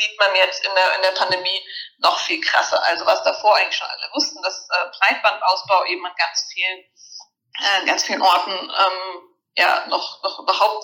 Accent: German